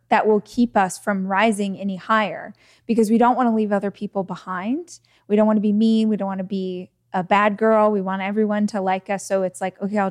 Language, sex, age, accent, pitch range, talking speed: English, female, 20-39, American, 185-215 Hz, 250 wpm